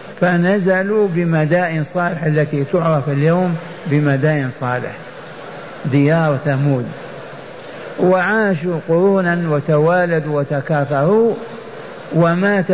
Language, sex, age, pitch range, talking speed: Arabic, male, 60-79, 150-190 Hz, 70 wpm